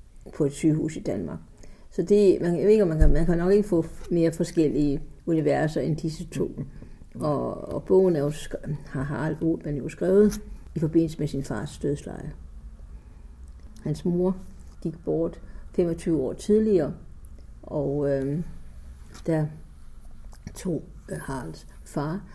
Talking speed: 135 wpm